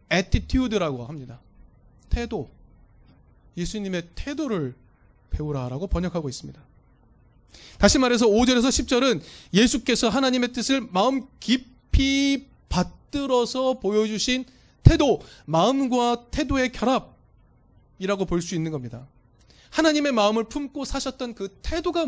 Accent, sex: native, male